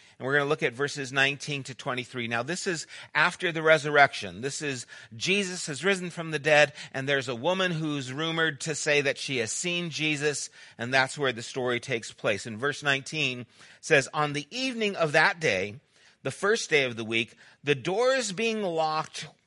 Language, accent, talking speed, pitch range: English, American, 195 wpm, 130-180 Hz